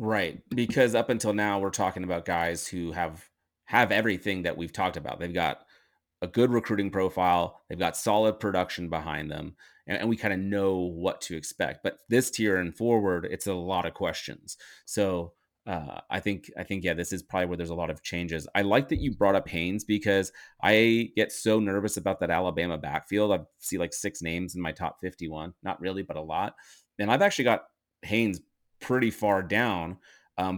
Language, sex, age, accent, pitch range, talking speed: English, male, 30-49, American, 90-115 Hz, 200 wpm